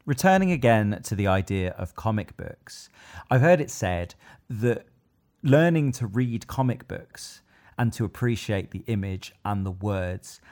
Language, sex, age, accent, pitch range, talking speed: English, male, 30-49, British, 95-120 Hz, 150 wpm